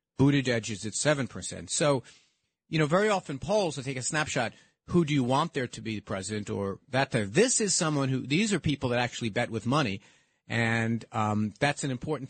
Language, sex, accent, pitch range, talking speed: English, male, American, 105-135 Hz, 215 wpm